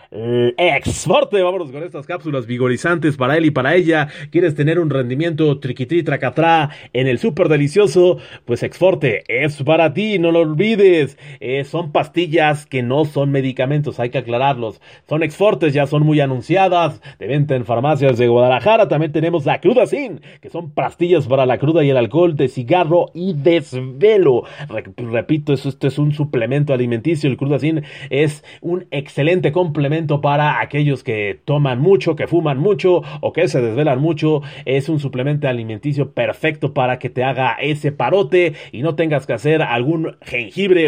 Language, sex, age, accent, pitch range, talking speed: Spanish, male, 30-49, Mexican, 135-170 Hz, 165 wpm